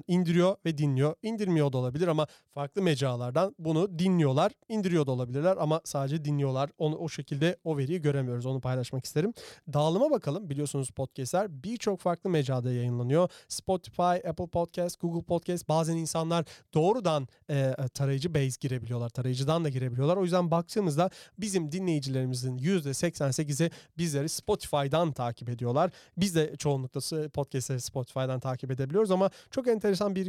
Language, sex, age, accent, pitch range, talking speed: Turkish, male, 40-59, native, 140-180 Hz, 140 wpm